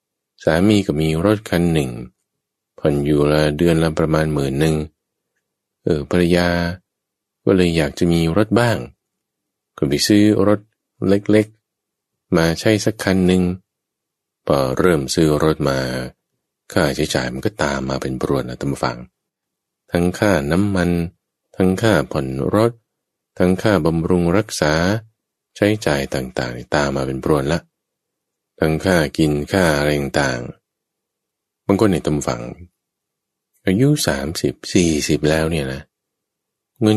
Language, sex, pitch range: English, male, 75-100 Hz